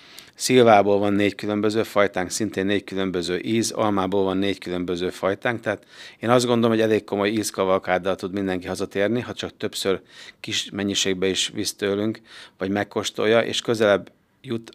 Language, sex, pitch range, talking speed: Hungarian, male, 95-110 Hz, 155 wpm